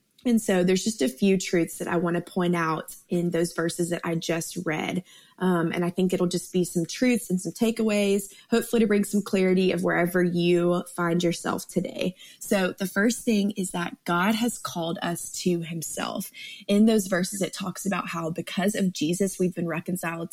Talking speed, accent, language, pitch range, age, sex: 200 wpm, American, English, 170-195 Hz, 20-39, female